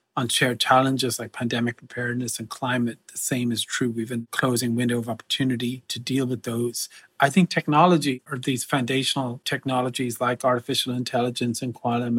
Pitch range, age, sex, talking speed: 120-135 Hz, 40-59, male, 165 wpm